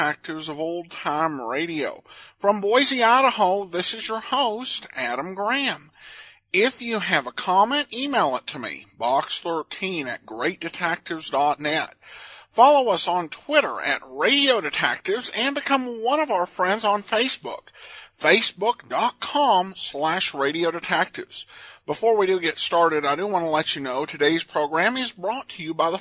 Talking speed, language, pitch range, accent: 150 wpm, English, 165-265 Hz, American